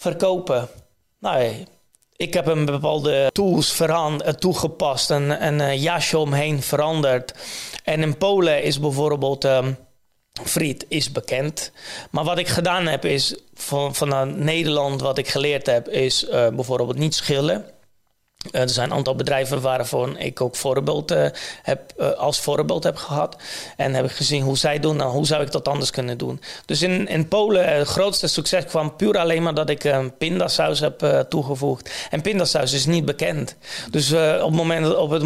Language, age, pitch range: Dutch, 30-49, 140-165 Hz